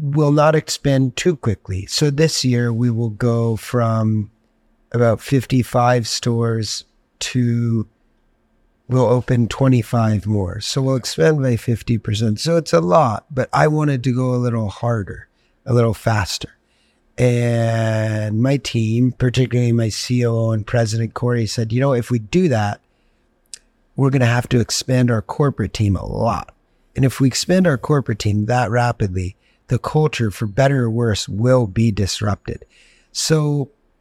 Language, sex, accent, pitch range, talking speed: English, male, American, 115-135 Hz, 150 wpm